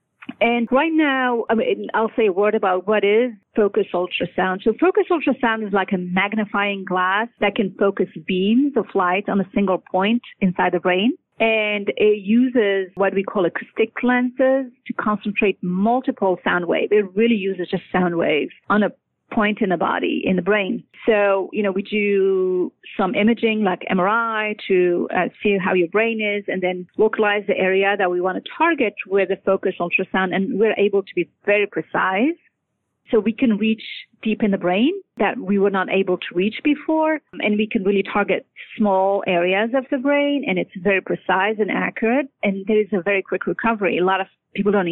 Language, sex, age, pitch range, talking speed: English, female, 30-49, 190-230 Hz, 195 wpm